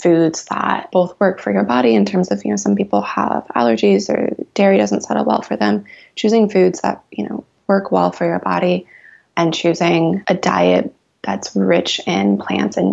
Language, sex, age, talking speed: English, female, 20-39, 195 wpm